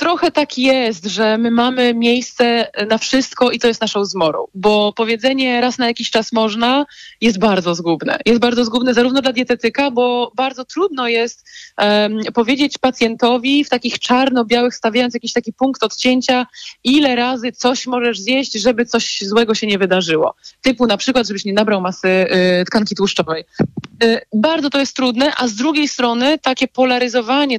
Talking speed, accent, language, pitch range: 160 wpm, native, Polish, 220-265 Hz